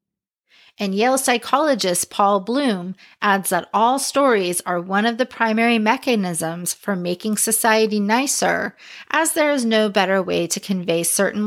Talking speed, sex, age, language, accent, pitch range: 145 wpm, female, 30-49, English, American, 180-240 Hz